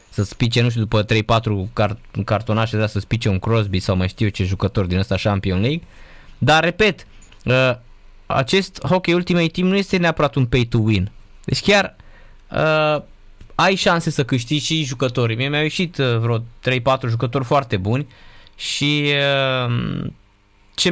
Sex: male